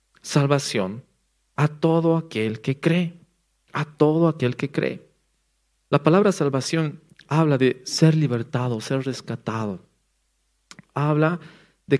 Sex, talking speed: male, 110 wpm